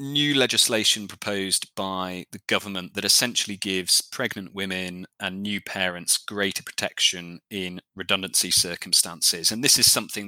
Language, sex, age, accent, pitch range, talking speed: English, male, 30-49, British, 95-115 Hz, 135 wpm